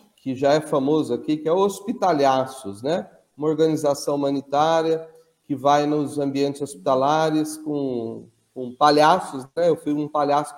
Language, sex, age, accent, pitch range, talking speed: Portuguese, male, 40-59, Brazilian, 140-180 Hz, 140 wpm